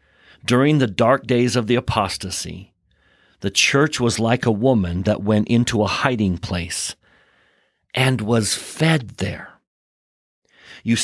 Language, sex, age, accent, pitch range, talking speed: English, male, 50-69, American, 100-135 Hz, 130 wpm